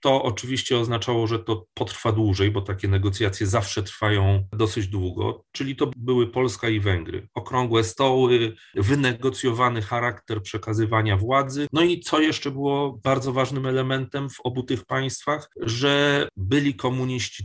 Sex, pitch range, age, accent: male, 105-135 Hz, 30-49, native